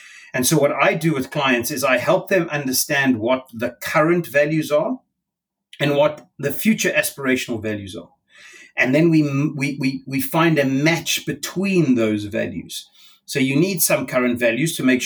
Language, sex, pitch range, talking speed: English, male, 125-160 Hz, 175 wpm